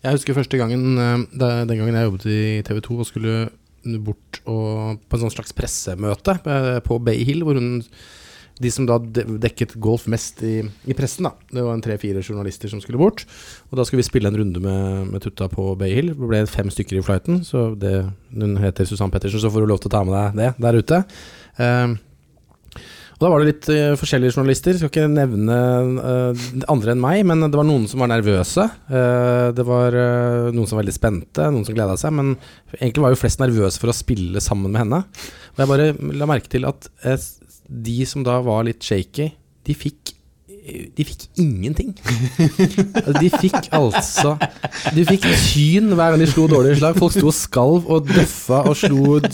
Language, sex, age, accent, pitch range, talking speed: English, male, 20-39, Norwegian, 110-150 Hz, 185 wpm